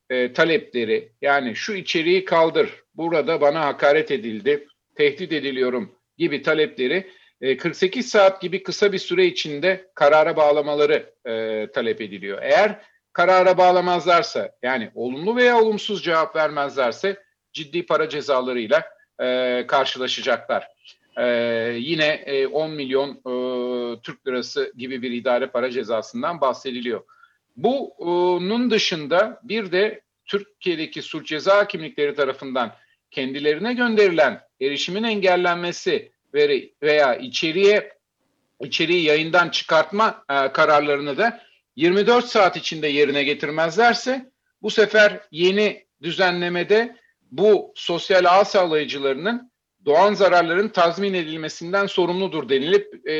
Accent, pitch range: native, 150-210 Hz